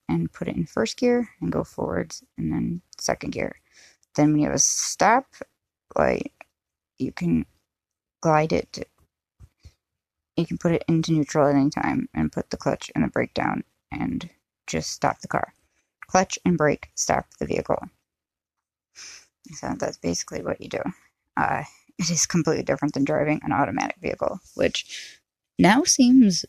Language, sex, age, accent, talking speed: English, female, 20-39, American, 160 wpm